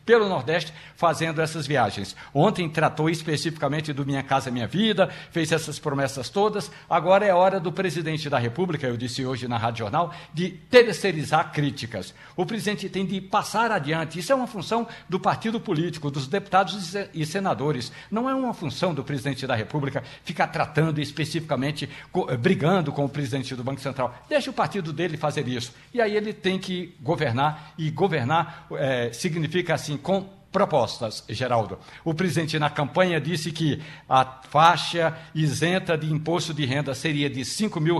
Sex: male